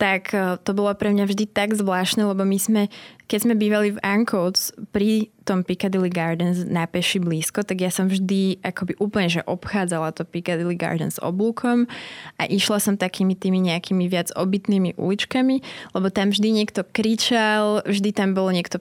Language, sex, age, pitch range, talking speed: Slovak, female, 20-39, 175-205 Hz, 170 wpm